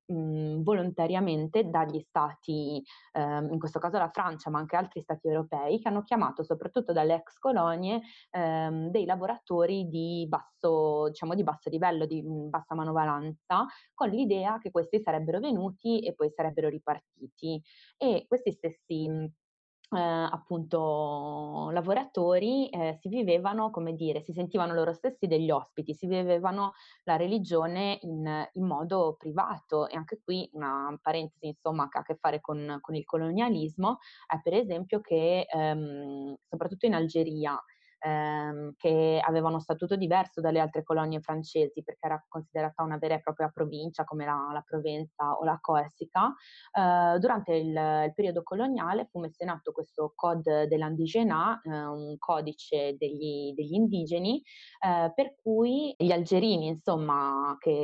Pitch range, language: 155-195 Hz, Italian